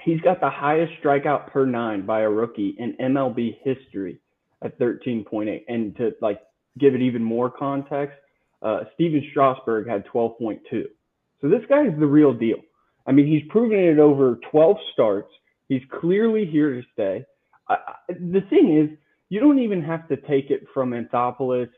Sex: male